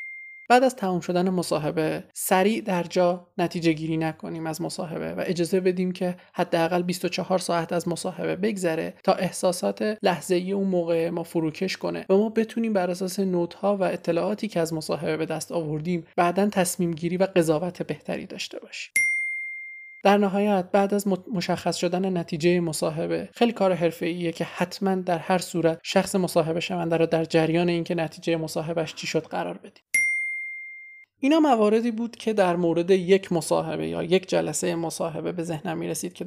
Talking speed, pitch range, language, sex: 165 wpm, 165-190 Hz, Persian, male